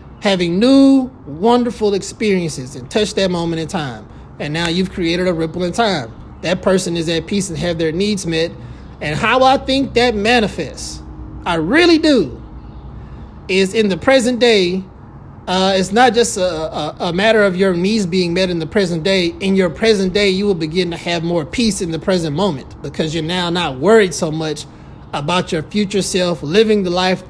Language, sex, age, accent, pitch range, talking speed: English, male, 20-39, American, 170-220 Hz, 195 wpm